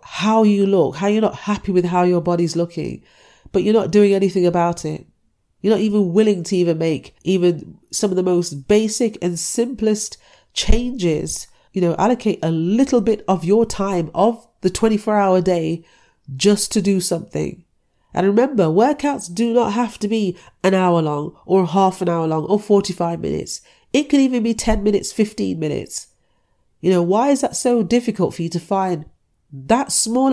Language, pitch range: English, 175-220 Hz